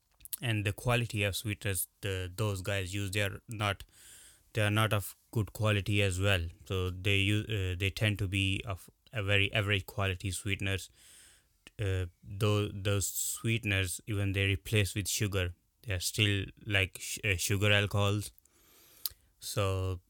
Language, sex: English, male